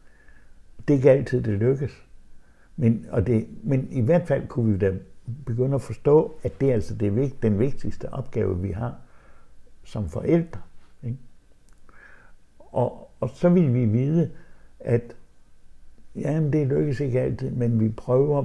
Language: Danish